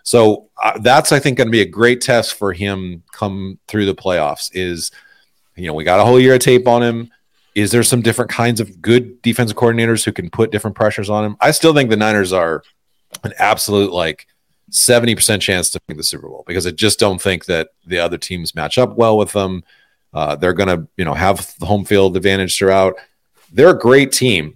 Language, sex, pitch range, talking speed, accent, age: English, male, 95-120 Hz, 220 wpm, American, 40-59